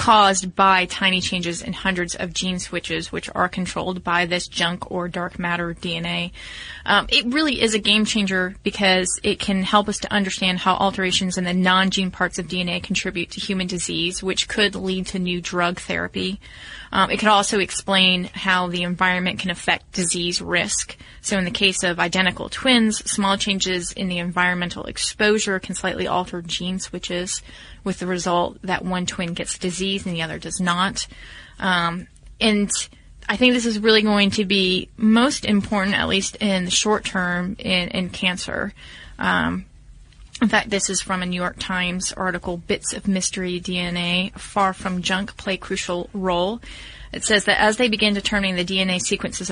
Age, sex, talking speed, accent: 20-39, female, 180 wpm, American